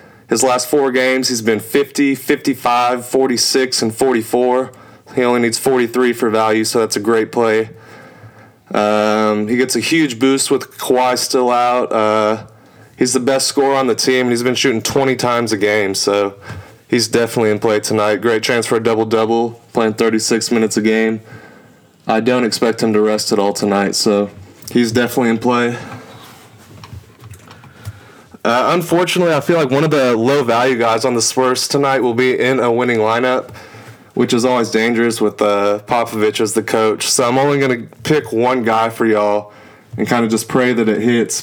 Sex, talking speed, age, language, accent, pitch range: male, 180 wpm, 20-39, English, American, 110-130 Hz